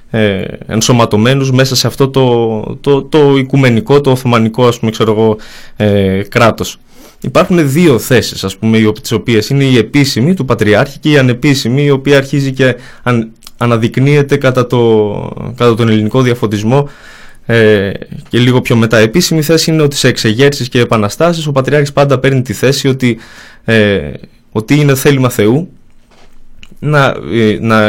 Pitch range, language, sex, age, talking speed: 105-135 Hz, Greek, male, 20-39, 150 wpm